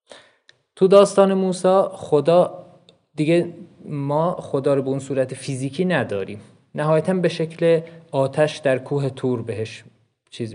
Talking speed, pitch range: 125 wpm, 130-155 Hz